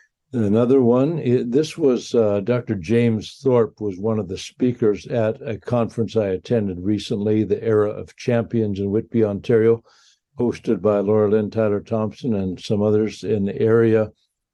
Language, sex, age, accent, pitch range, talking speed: English, male, 60-79, American, 100-120 Hz, 155 wpm